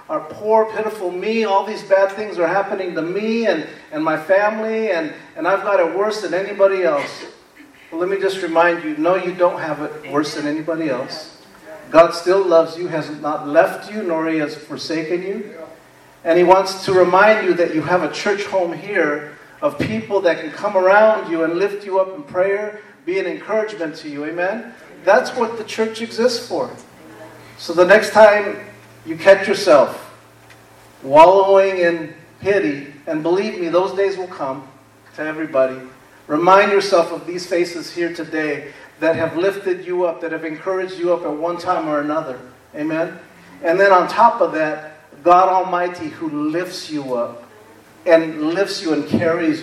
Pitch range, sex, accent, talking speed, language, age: 150-195 Hz, male, American, 180 wpm, English, 40-59